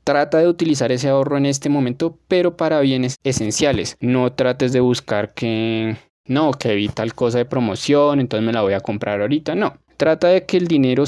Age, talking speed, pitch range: 20-39, 200 wpm, 120-145 Hz